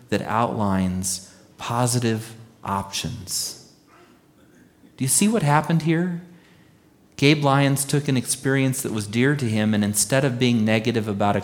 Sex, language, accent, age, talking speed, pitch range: male, English, American, 40-59, 140 wpm, 100-135 Hz